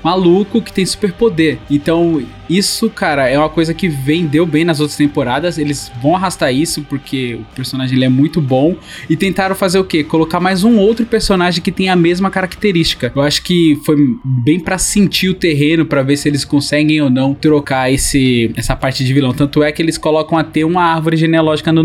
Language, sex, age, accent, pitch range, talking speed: Portuguese, male, 20-39, Brazilian, 140-175 Hz, 205 wpm